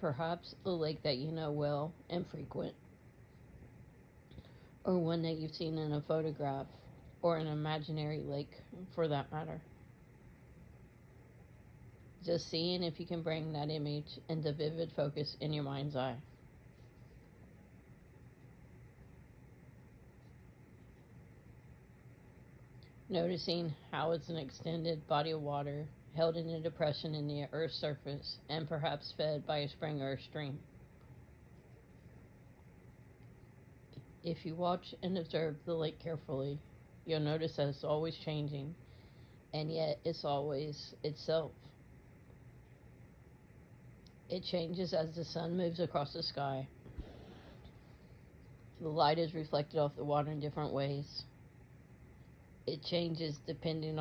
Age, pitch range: 40-59, 140-165 Hz